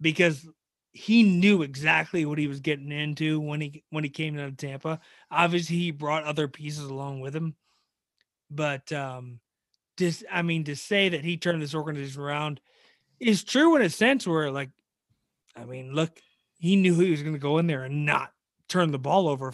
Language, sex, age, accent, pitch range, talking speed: English, male, 30-49, American, 150-185 Hz, 195 wpm